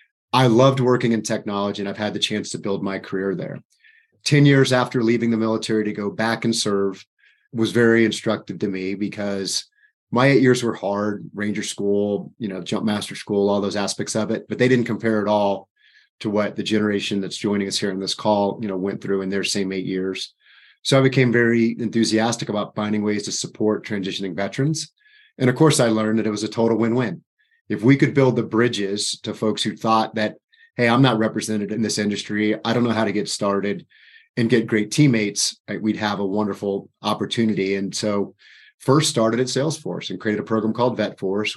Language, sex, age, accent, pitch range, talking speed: English, male, 30-49, American, 100-115 Hz, 210 wpm